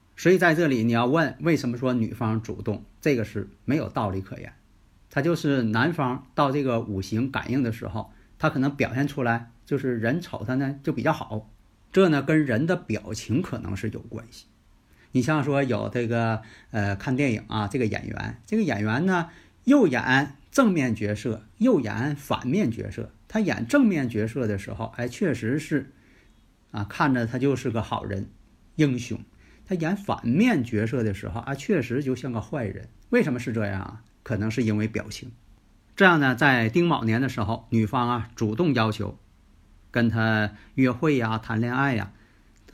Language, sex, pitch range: Chinese, male, 110-145 Hz